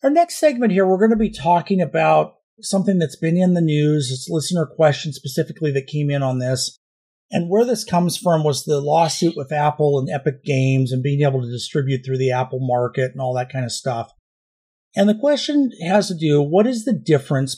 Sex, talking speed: male, 220 wpm